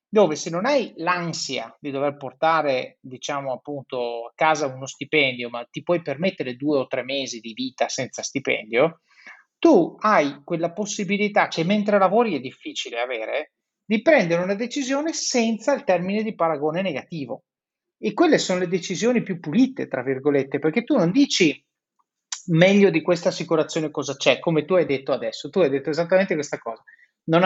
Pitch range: 145-220 Hz